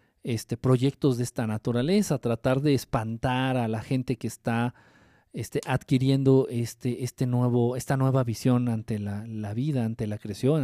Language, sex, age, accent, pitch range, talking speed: Spanish, male, 40-59, Mexican, 115-150 Hz, 160 wpm